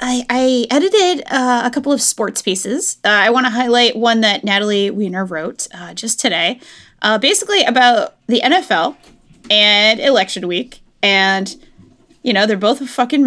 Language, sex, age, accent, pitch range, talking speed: English, female, 20-39, American, 210-285 Hz, 165 wpm